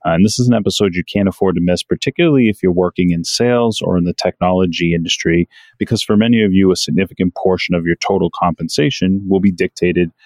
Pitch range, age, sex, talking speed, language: 85-100 Hz, 30-49, male, 215 wpm, English